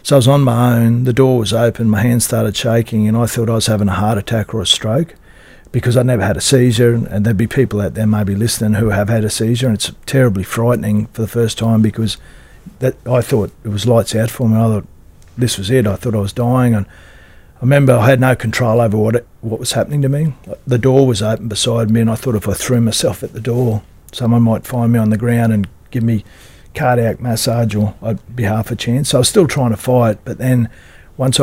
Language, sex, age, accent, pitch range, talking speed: English, male, 40-59, Australian, 105-125 Hz, 255 wpm